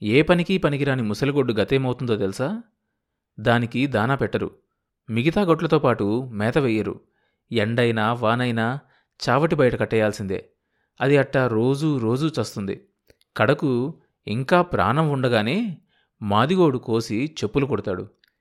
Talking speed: 100 wpm